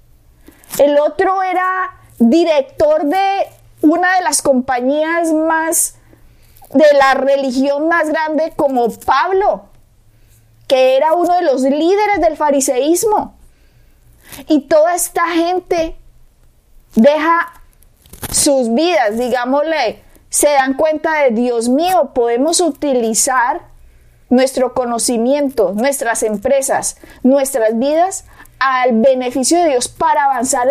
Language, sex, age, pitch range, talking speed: Spanish, female, 30-49, 225-300 Hz, 105 wpm